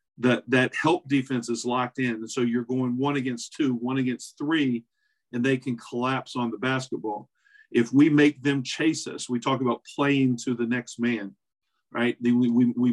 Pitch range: 120-135 Hz